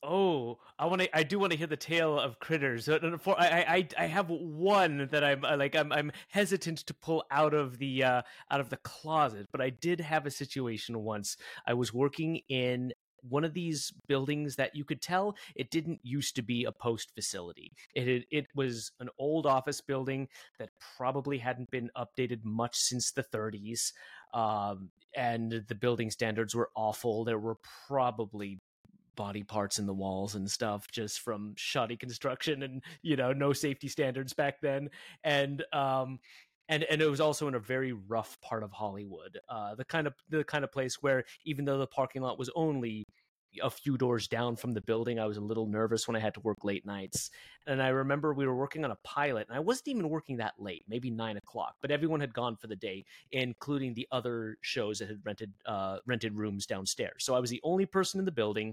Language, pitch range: English, 115-150 Hz